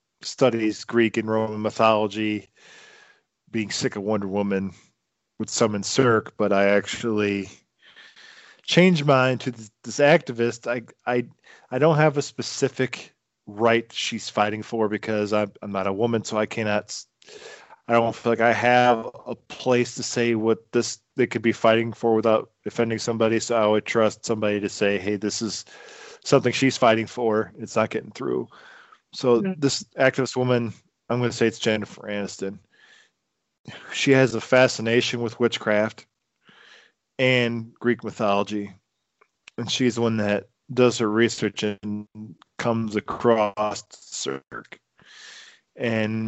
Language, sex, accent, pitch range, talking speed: English, male, American, 105-120 Hz, 145 wpm